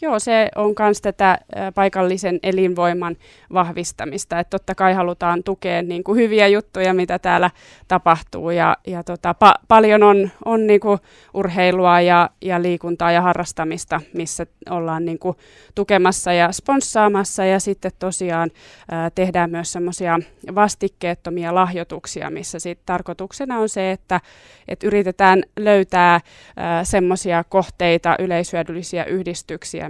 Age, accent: 20-39, native